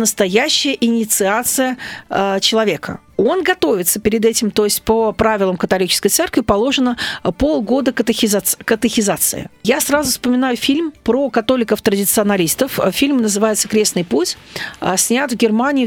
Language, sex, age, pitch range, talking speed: Russian, female, 40-59, 195-255 Hz, 115 wpm